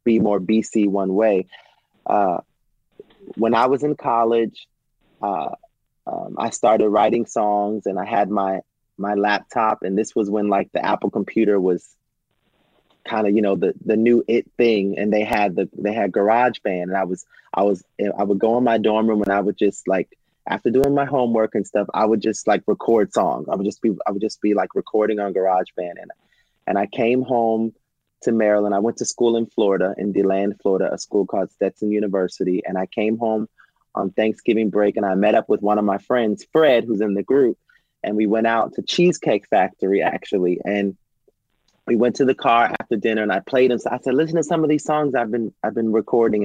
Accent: American